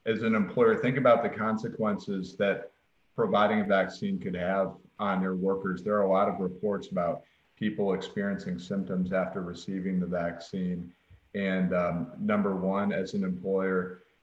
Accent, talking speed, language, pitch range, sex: American, 155 wpm, English, 90-100 Hz, male